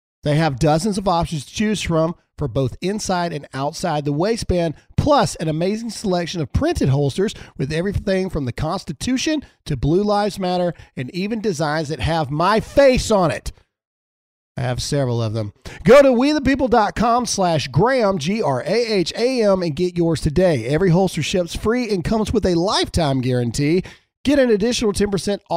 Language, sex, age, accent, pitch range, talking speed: English, male, 40-59, American, 140-205 Hz, 160 wpm